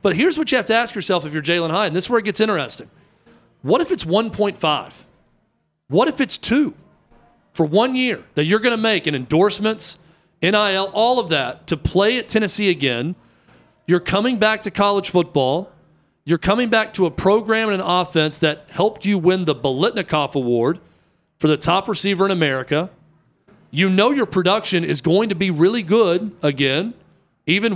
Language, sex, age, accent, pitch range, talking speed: English, male, 40-59, American, 160-210 Hz, 185 wpm